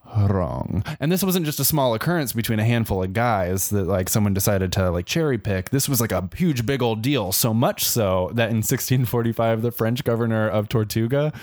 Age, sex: 20-39, male